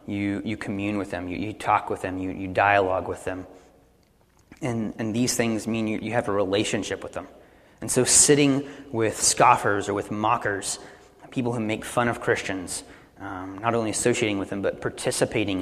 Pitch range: 95-125 Hz